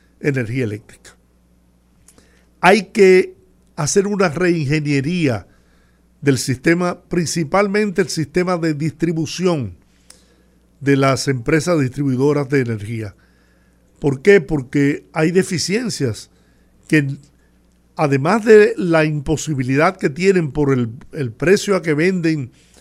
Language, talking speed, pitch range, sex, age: Spanish, 105 wpm, 130-175 Hz, male, 50-69